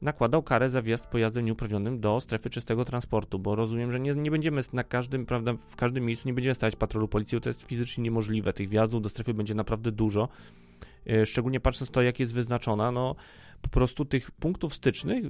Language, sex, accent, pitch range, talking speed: Polish, male, native, 110-135 Hz, 195 wpm